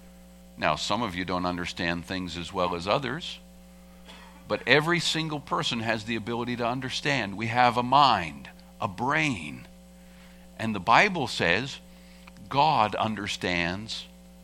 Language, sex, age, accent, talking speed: English, male, 50-69, American, 135 wpm